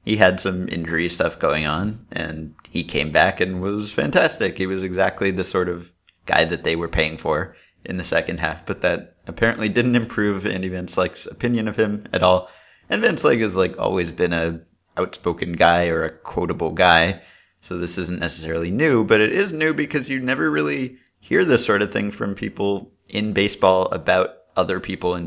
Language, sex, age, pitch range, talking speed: English, male, 30-49, 90-110 Hz, 195 wpm